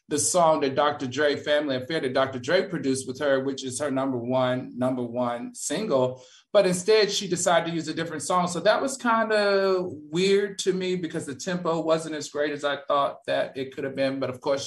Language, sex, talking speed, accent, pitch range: English, male, 225 wpm, American, 135-185 Hz